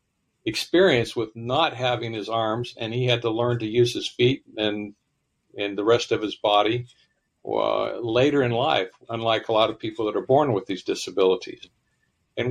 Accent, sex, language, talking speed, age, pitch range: American, male, English, 180 wpm, 60-79, 115-130 Hz